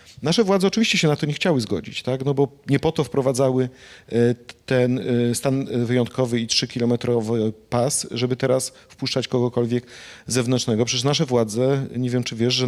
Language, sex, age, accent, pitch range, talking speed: Polish, male, 40-59, native, 120-155 Hz, 165 wpm